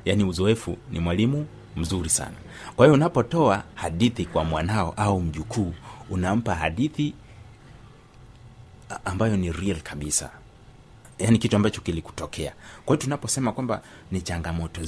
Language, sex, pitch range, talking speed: Swahili, male, 85-110 Hz, 120 wpm